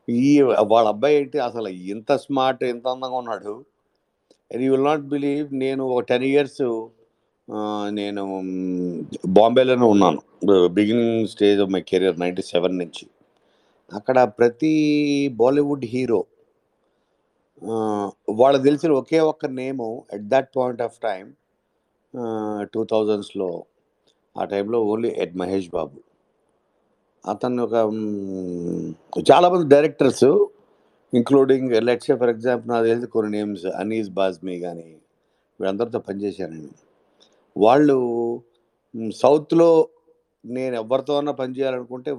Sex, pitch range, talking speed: male, 105-140 Hz, 105 wpm